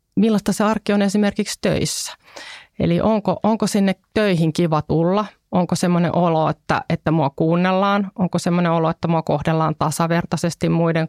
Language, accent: Finnish, native